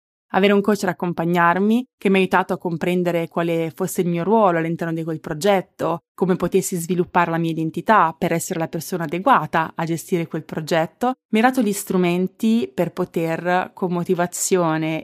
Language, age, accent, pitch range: Italian, 20-39, native, 170-195 Hz